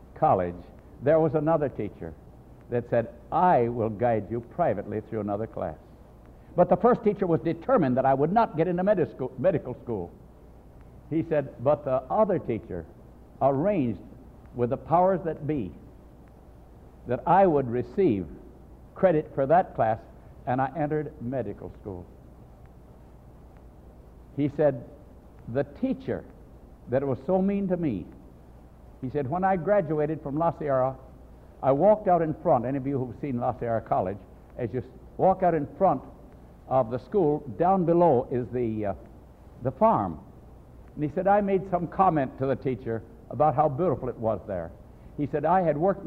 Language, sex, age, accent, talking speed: English, male, 60-79, American, 160 wpm